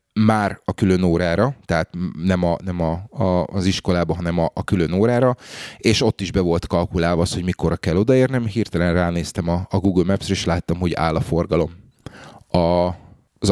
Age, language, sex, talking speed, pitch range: 30-49, Hungarian, male, 185 wpm, 90-115 Hz